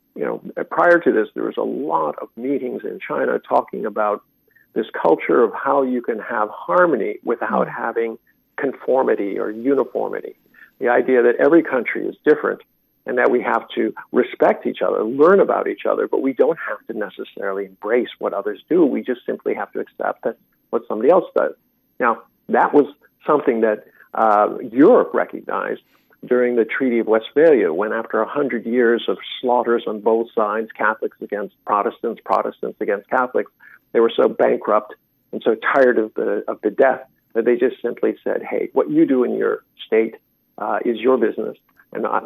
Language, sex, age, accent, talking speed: English, male, 50-69, American, 180 wpm